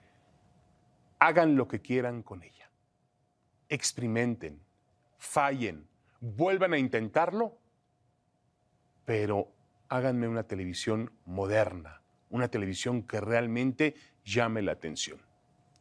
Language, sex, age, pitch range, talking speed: Spanish, male, 40-59, 105-145 Hz, 85 wpm